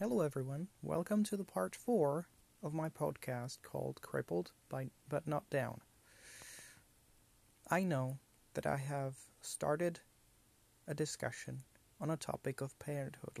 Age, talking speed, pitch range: 30-49, 130 wpm, 115-155 Hz